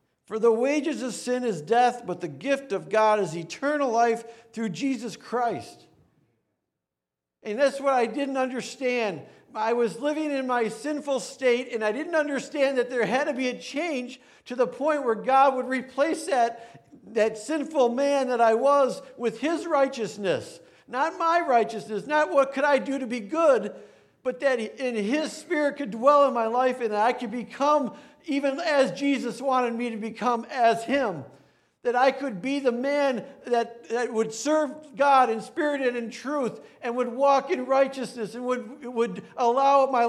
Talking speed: 180 wpm